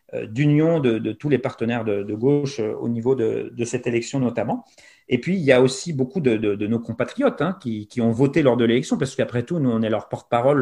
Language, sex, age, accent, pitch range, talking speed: French, male, 30-49, French, 120-155 Hz, 250 wpm